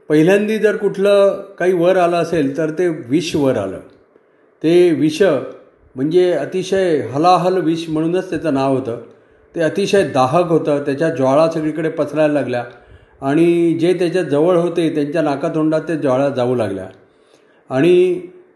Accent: native